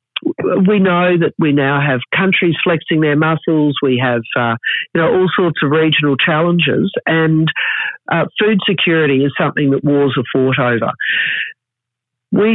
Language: English